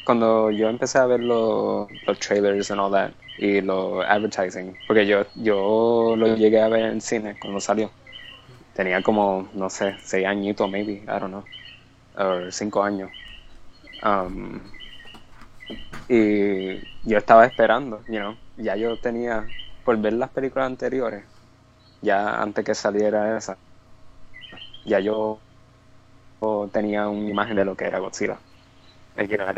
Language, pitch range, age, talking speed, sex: English, 100-115 Hz, 20-39, 140 wpm, male